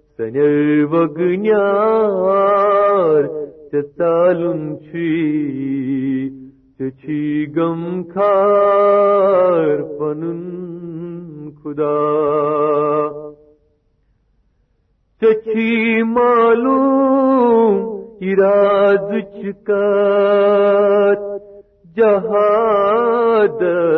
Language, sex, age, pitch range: Urdu, male, 50-69, 150-205 Hz